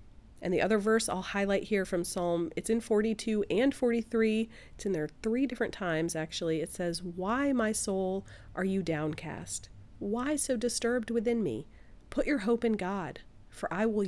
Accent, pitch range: American, 175-230 Hz